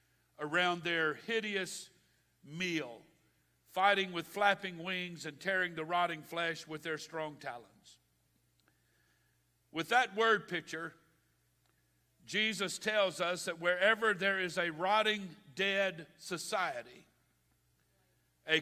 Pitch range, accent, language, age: 150-195 Hz, American, English, 50-69